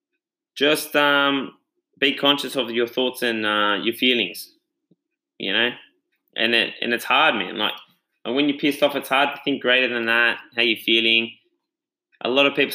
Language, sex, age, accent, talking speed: English, male, 20-39, Australian, 185 wpm